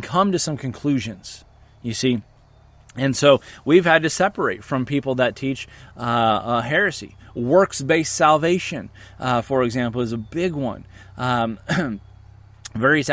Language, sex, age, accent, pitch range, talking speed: English, male, 30-49, American, 110-165 Hz, 135 wpm